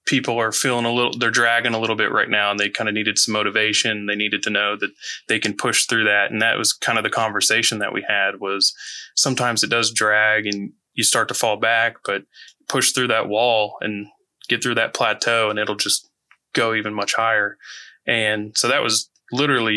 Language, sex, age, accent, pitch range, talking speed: English, male, 20-39, American, 105-120 Hz, 220 wpm